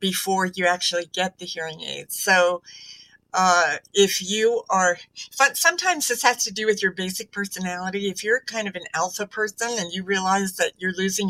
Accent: American